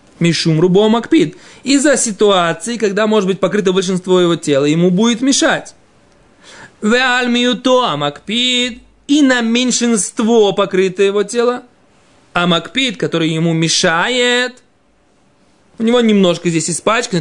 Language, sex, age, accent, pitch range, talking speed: Russian, male, 20-39, native, 175-245 Hz, 115 wpm